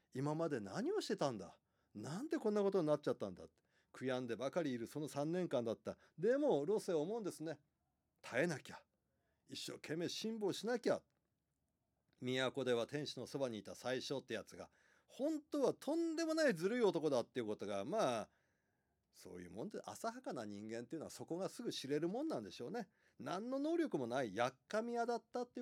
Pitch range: 150-250 Hz